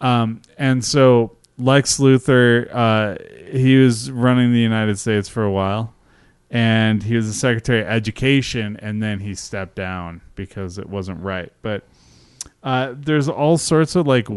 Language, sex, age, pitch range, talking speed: English, male, 20-39, 105-130 Hz, 160 wpm